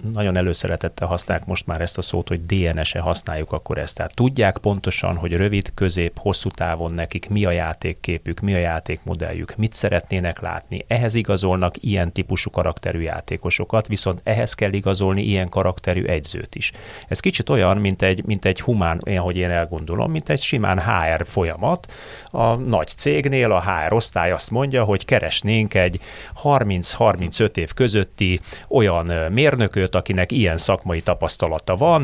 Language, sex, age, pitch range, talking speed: Hungarian, male, 30-49, 85-110 Hz, 155 wpm